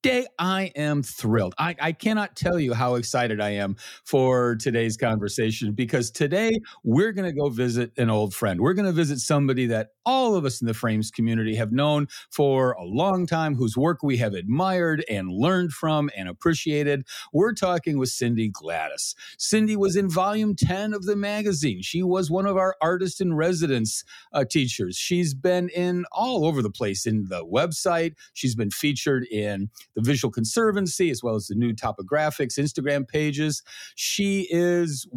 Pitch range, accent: 120-180 Hz, American